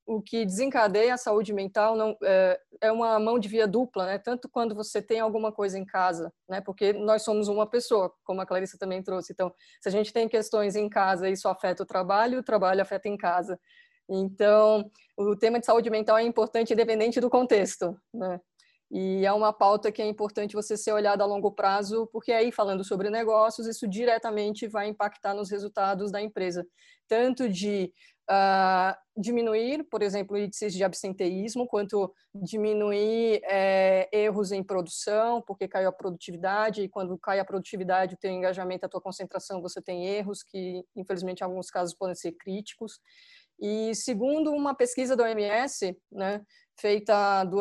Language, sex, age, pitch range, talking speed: Portuguese, female, 20-39, 190-220 Hz, 175 wpm